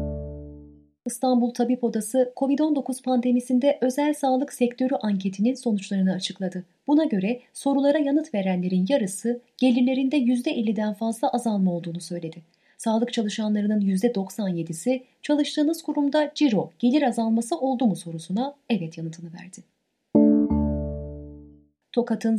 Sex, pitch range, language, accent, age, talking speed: female, 180-245 Hz, Turkish, native, 30-49, 100 wpm